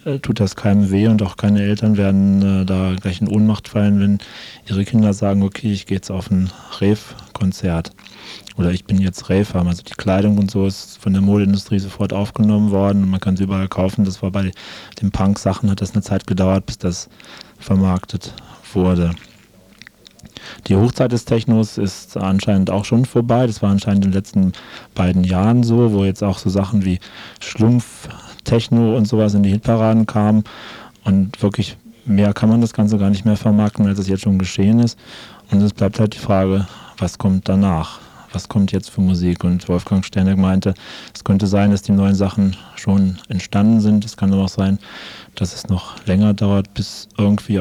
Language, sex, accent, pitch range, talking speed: German, male, German, 95-105 Hz, 190 wpm